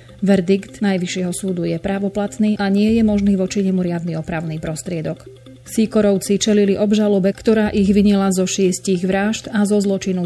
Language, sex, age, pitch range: Slovak, female, 30-49, 180-205 Hz